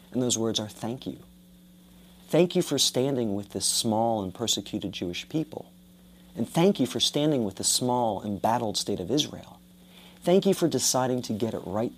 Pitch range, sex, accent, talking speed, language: 95-130 Hz, male, American, 185 wpm, English